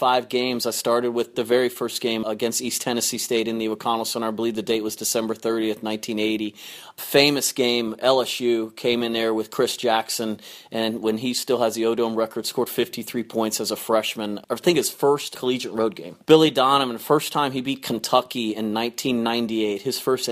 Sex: male